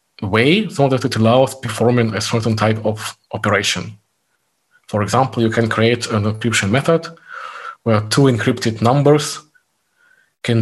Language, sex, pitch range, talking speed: English, male, 110-130 Hz, 135 wpm